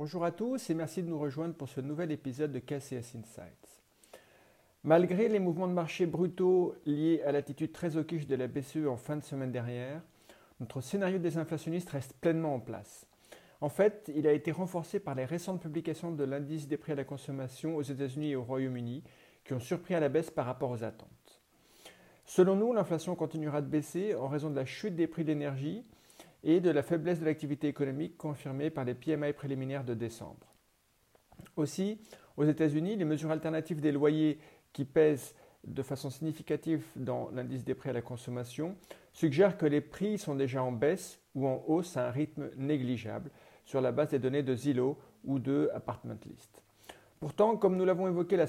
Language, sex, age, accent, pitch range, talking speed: French, male, 50-69, French, 135-170 Hz, 190 wpm